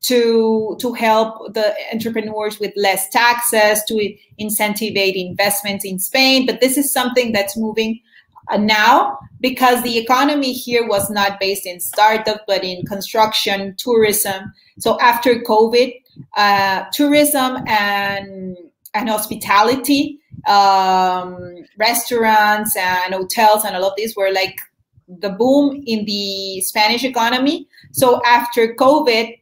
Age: 30-49